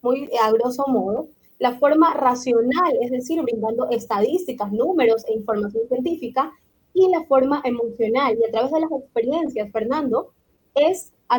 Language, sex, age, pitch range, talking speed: Spanish, female, 20-39, 240-310 Hz, 150 wpm